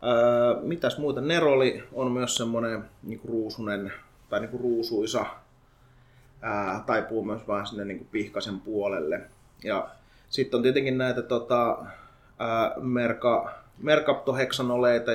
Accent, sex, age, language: native, male, 20-39, Finnish